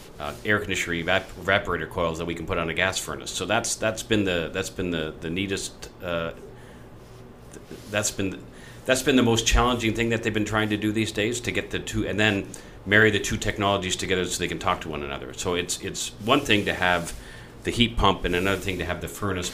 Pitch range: 90-105 Hz